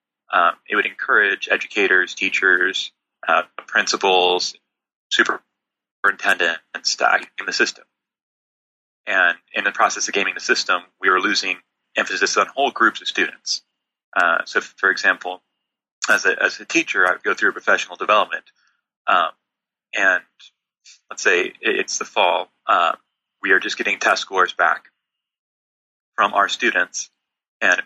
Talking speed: 140 wpm